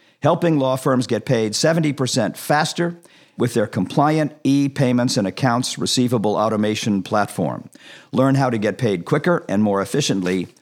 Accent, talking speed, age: American, 140 wpm, 50-69